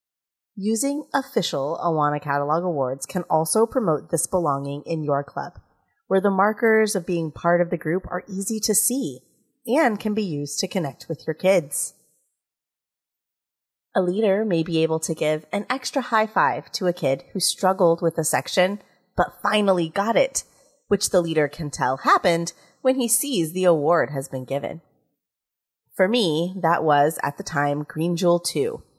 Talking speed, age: 170 wpm, 30-49